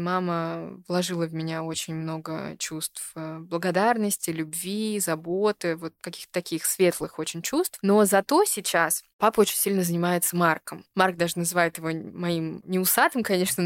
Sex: female